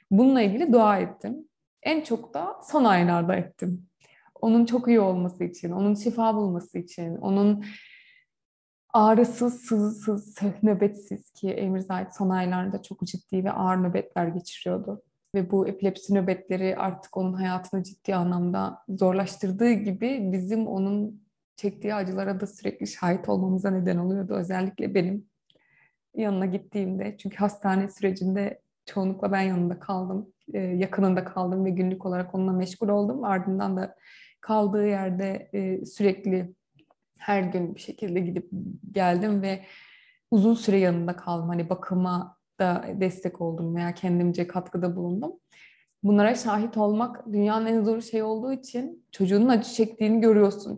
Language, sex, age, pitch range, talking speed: Turkish, female, 20-39, 185-210 Hz, 130 wpm